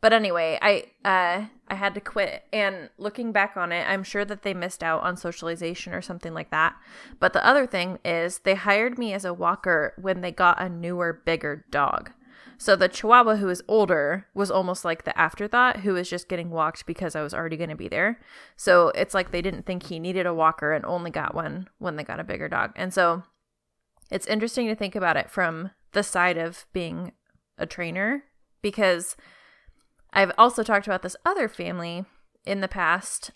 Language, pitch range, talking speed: English, 170-205 Hz, 205 wpm